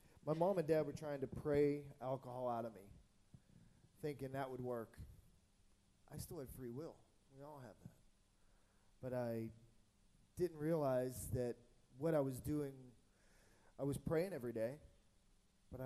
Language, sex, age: English, male, 20-39